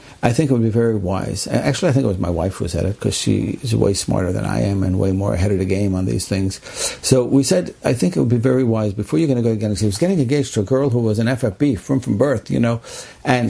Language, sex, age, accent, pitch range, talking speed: English, male, 60-79, American, 110-170 Hz, 300 wpm